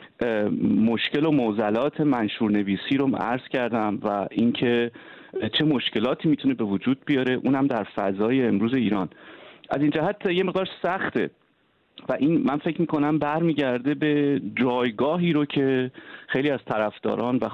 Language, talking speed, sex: Persian, 140 wpm, male